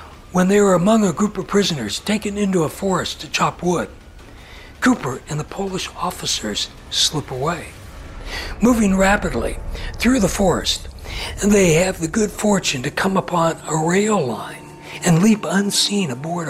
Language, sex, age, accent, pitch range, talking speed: English, male, 60-79, American, 130-195 Hz, 155 wpm